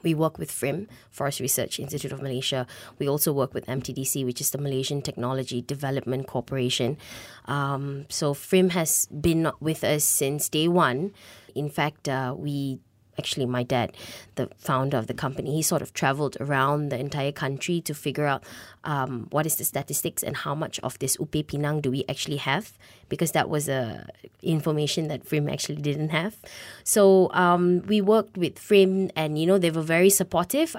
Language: English